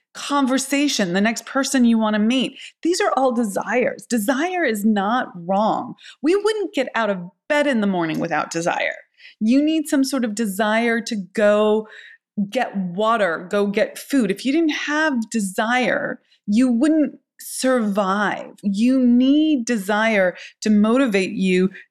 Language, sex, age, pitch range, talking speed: English, female, 30-49, 210-270 Hz, 150 wpm